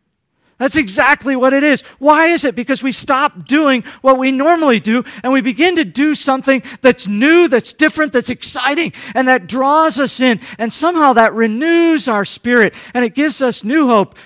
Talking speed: 190 wpm